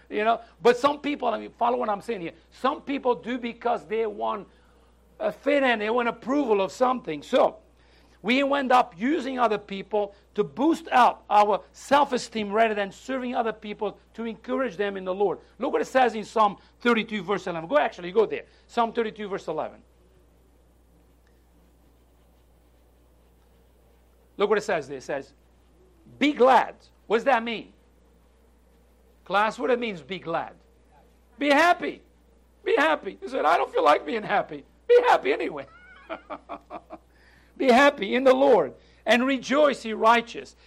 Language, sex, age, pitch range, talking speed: English, male, 60-79, 160-245 Hz, 160 wpm